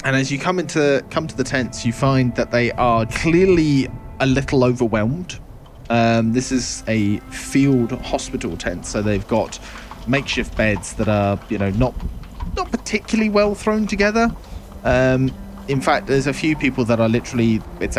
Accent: British